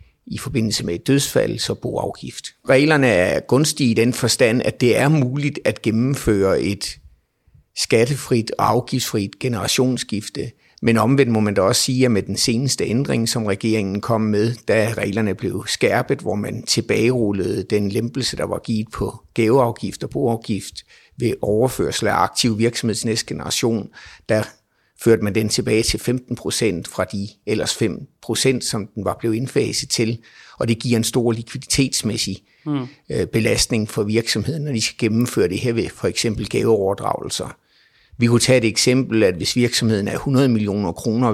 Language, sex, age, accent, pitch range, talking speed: Danish, male, 50-69, native, 110-130 Hz, 165 wpm